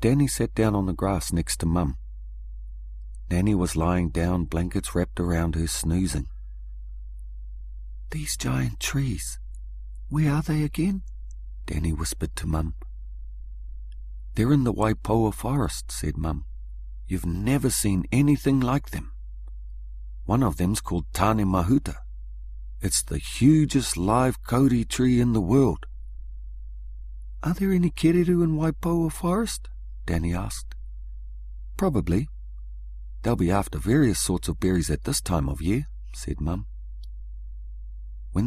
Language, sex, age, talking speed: English, male, 50-69, 130 wpm